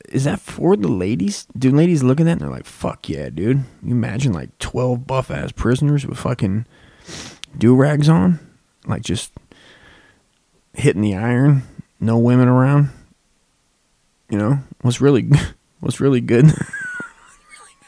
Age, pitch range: 20-39, 105-135 Hz